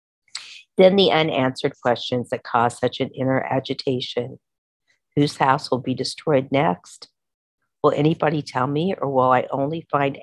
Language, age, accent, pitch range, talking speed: English, 50-69, American, 130-160 Hz, 145 wpm